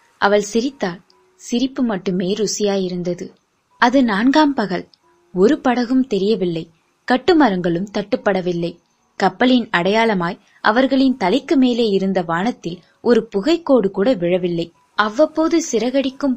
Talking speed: 95 wpm